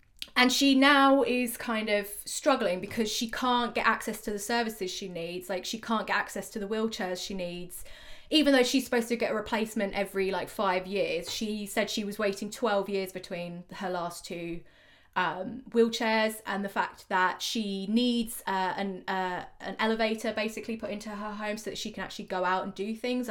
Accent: British